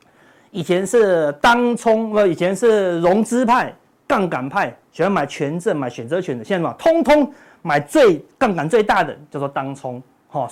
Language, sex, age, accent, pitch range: Chinese, male, 30-49, native, 150-230 Hz